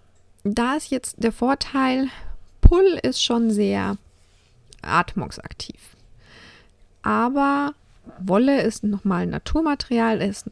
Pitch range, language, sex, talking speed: 170-210 Hz, German, female, 95 wpm